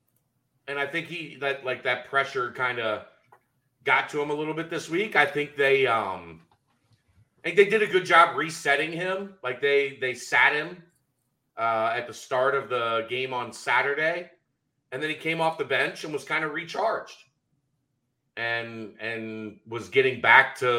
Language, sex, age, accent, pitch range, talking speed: English, male, 30-49, American, 120-150 Hz, 180 wpm